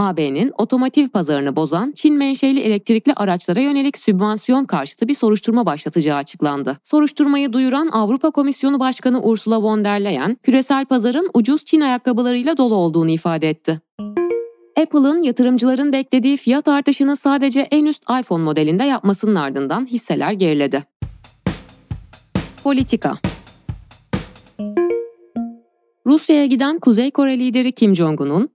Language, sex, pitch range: Turkish, female, 160-265 Hz